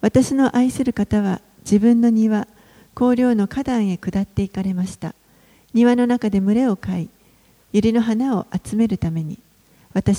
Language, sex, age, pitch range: Japanese, female, 40-59, 195-230 Hz